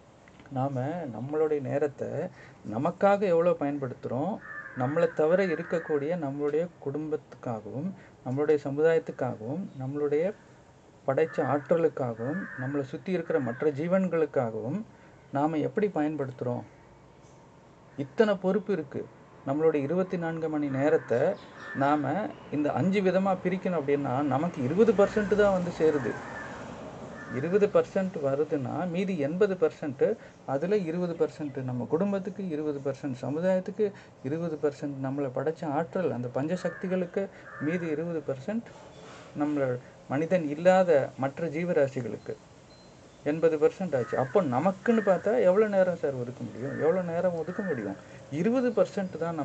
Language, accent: Tamil, native